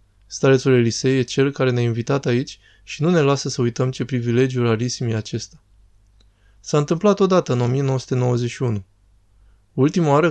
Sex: male